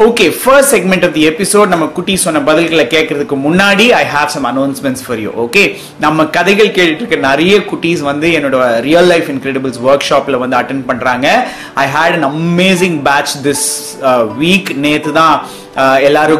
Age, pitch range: 30-49, 140-175 Hz